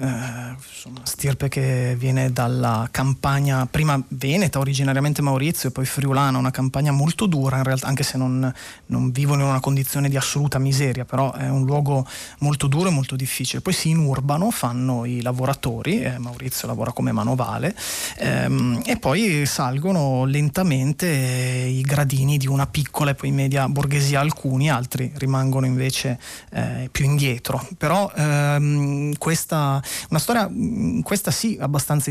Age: 30-49